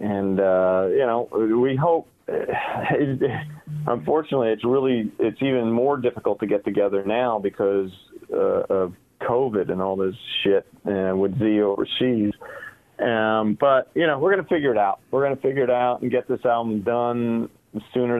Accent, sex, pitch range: American, male, 105-130 Hz